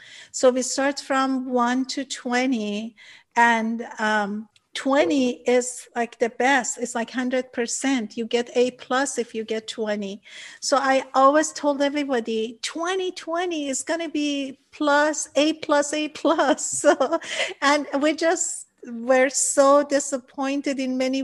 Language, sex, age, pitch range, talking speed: English, female, 50-69, 245-290 Hz, 140 wpm